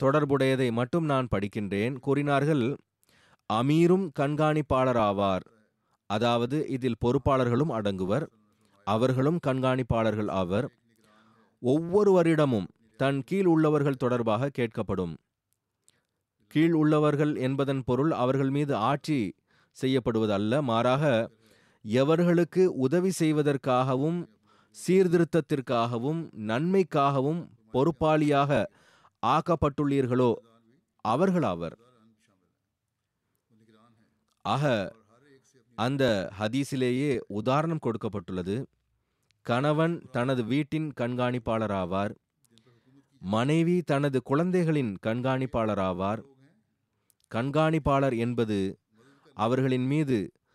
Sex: male